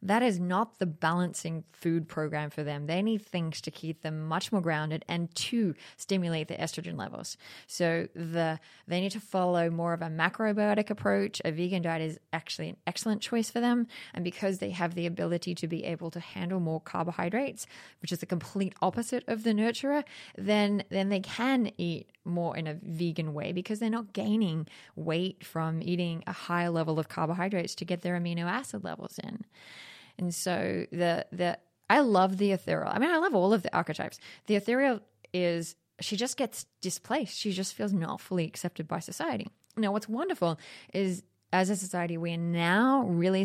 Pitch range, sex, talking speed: 170-205 Hz, female, 190 wpm